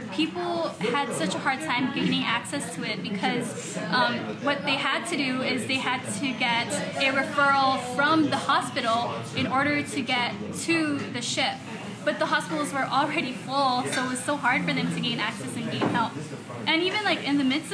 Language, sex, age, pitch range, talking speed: English, female, 10-29, 240-280 Hz, 200 wpm